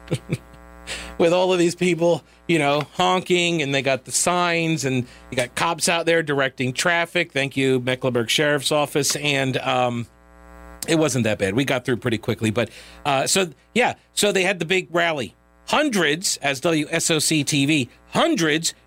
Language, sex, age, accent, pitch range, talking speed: English, male, 40-59, American, 120-170 Hz, 165 wpm